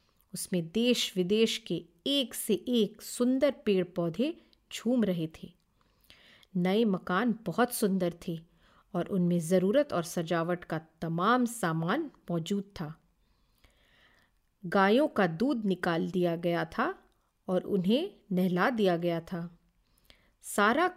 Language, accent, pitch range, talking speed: Hindi, native, 175-215 Hz, 120 wpm